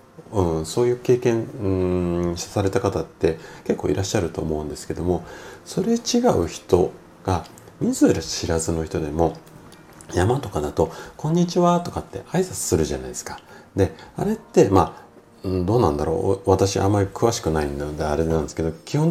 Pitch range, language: 80-125 Hz, Japanese